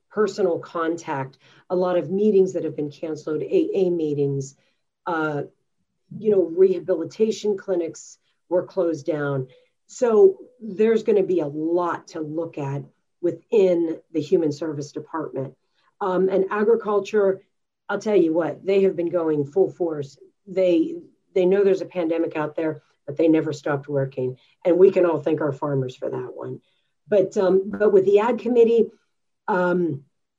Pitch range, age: 155-200 Hz, 40-59